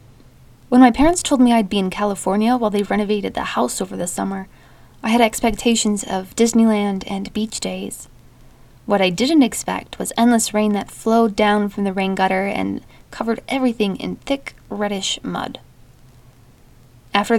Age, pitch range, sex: 20-39, 175-225 Hz, female